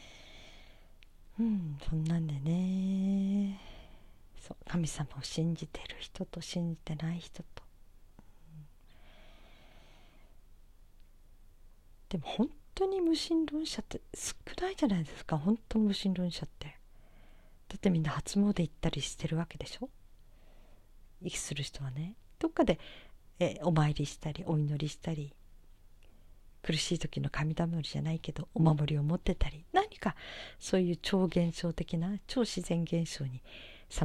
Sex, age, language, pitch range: female, 40-59, Japanese, 135-190 Hz